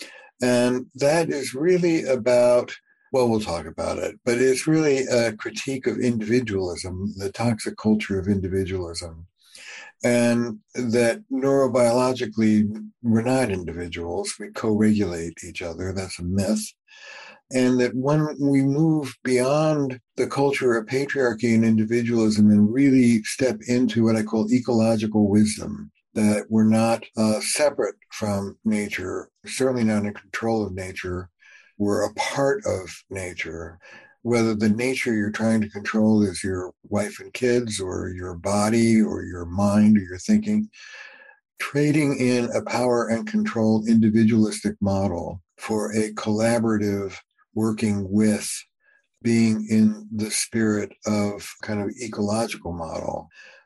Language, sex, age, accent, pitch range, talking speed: English, male, 60-79, American, 105-125 Hz, 130 wpm